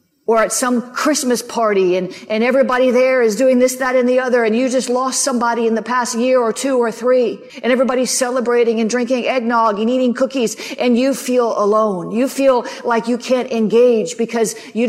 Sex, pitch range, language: female, 225-275 Hz, English